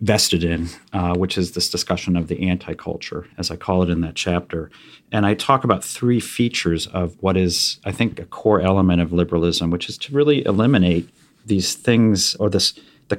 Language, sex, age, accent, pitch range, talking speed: English, male, 40-59, American, 90-110 Hz, 195 wpm